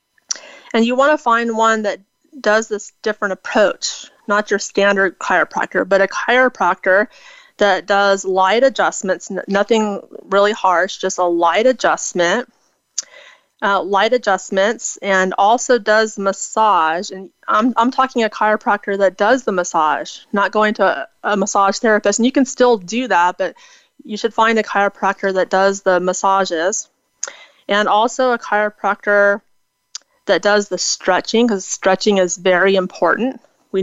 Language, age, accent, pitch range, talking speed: English, 30-49, American, 190-225 Hz, 145 wpm